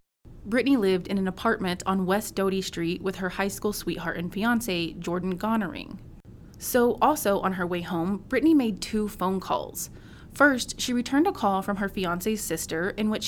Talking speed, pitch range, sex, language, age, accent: 180 wpm, 185-225 Hz, female, English, 20-39, American